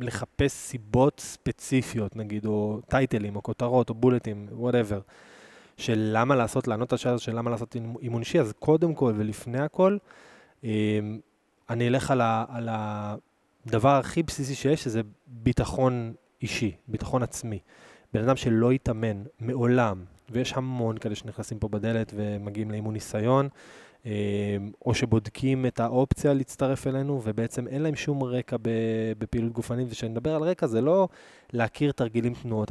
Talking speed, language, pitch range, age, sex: 140 wpm, Hebrew, 110-130 Hz, 20-39, male